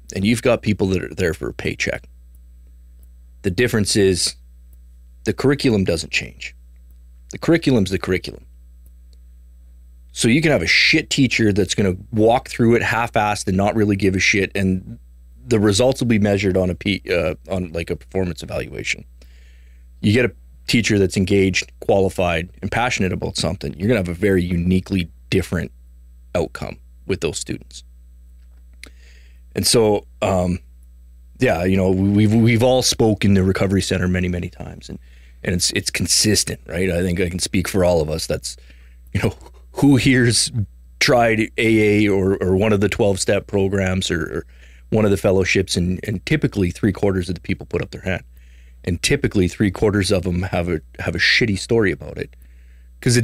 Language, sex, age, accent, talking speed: English, male, 30-49, American, 180 wpm